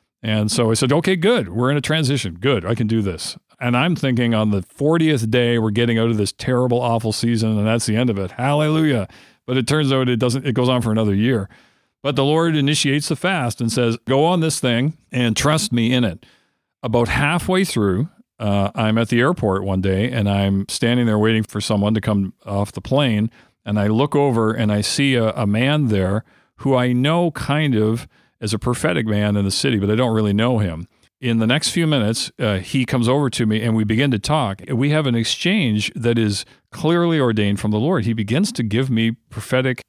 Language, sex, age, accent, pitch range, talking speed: English, male, 50-69, American, 110-135 Hz, 225 wpm